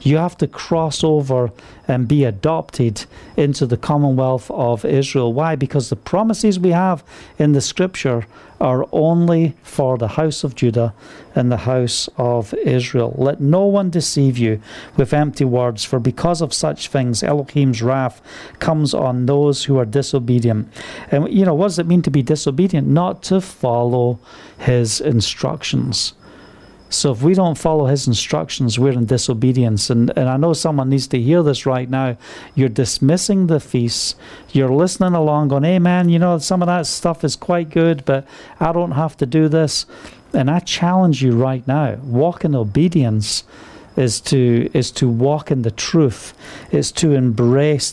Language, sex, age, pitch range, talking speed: English, male, 50-69, 125-160 Hz, 170 wpm